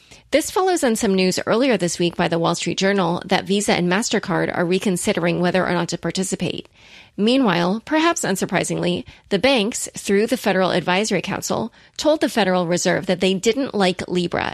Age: 30-49